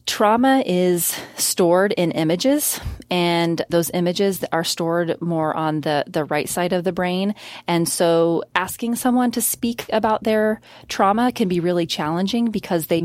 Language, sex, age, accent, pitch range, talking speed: English, female, 30-49, American, 160-185 Hz, 155 wpm